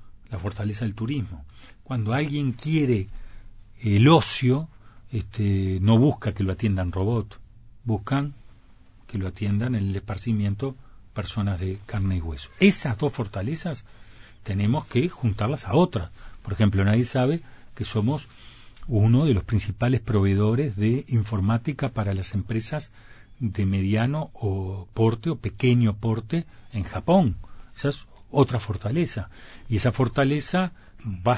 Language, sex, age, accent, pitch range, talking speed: Spanish, male, 40-59, Argentinian, 100-130 Hz, 130 wpm